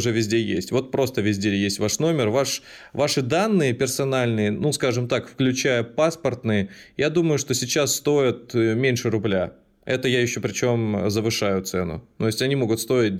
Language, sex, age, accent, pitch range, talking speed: Russian, male, 20-39, native, 110-135 Hz, 170 wpm